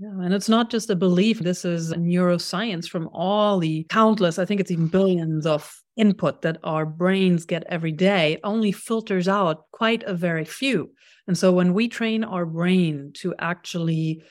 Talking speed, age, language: 190 wpm, 50-69, English